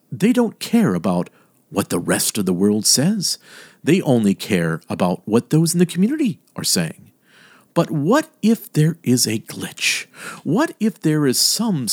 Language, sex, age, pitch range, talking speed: English, male, 50-69, 135-210 Hz, 170 wpm